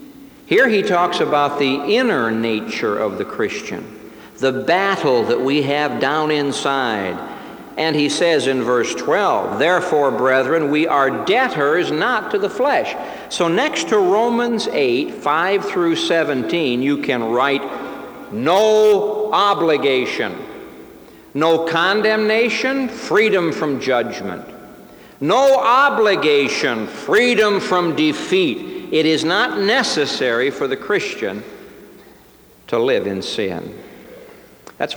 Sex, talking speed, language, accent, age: male, 115 wpm, English, American, 60-79